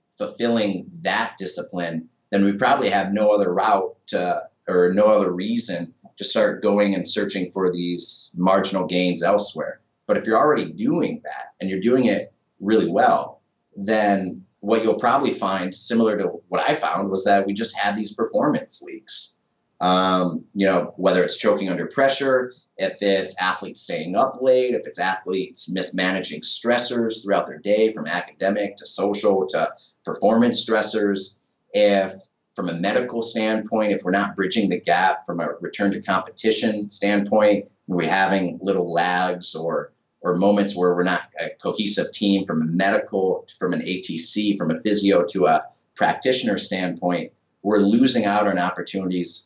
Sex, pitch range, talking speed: male, 90-110 Hz, 160 wpm